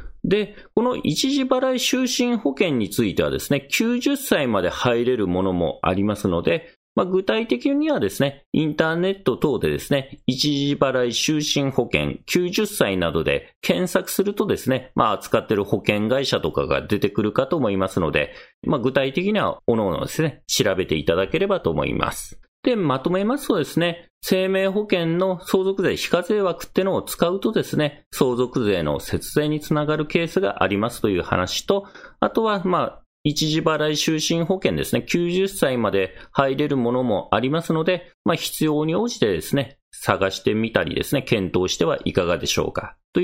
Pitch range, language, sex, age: 130-195 Hz, Japanese, male, 40-59